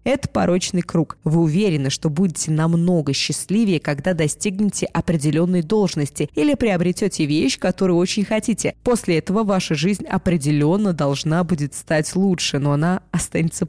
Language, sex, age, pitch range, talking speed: Russian, female, 20-39, 155-195 Hz, 135 wpm